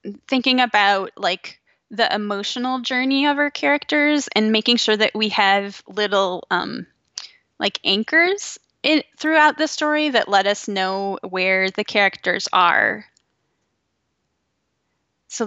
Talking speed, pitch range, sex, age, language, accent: 120 wpm, 195-250 Hz, female, 10-29, English, American